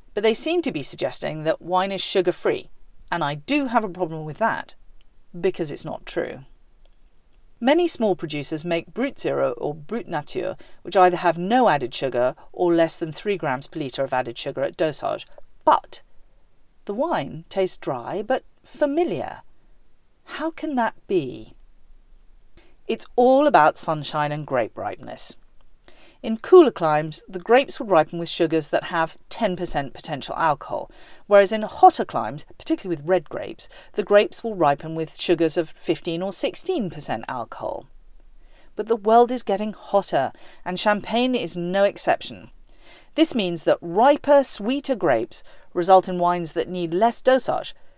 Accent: British